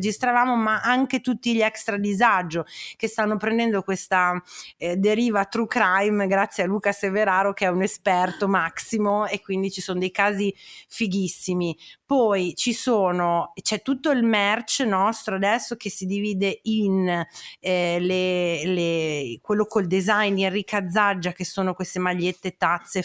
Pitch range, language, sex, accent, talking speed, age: 185-220 Hz, Italian, female, native, 145 wpm, 30-49